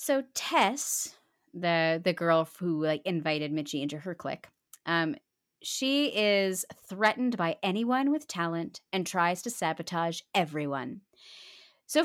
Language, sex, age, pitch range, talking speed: English, female, 30-49, 160-220 Hz, 130 wpm